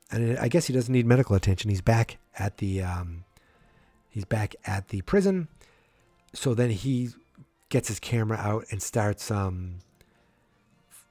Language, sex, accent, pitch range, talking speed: English, male, American, 105-135 Hz, 155 wpm